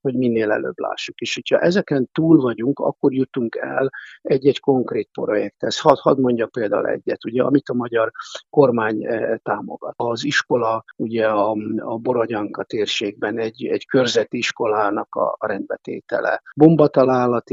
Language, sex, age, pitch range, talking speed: Hungarian, male, 50-69, 120-145 Hz, 135 wpm